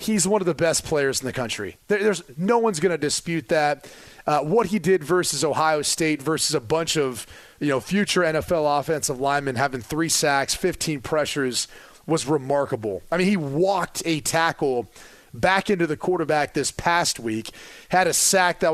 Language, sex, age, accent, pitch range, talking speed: English, male, 30-49, American, 145-195 Hz, 185 wpm